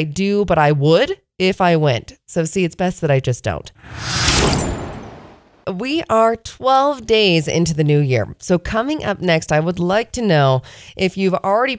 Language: English